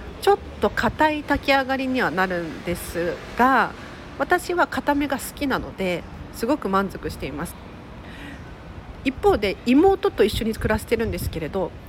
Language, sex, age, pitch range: Japanese, female, 40-59, 190-285 Hz